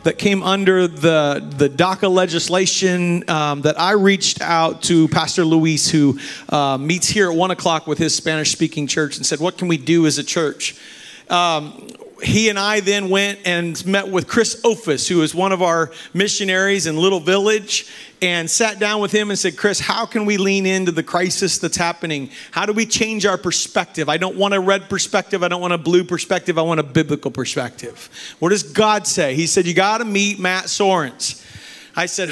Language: English